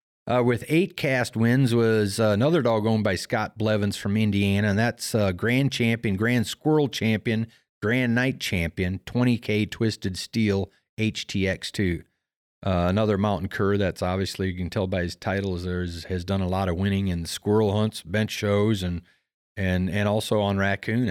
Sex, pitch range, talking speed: male, 95-115 Hz, 175 wpm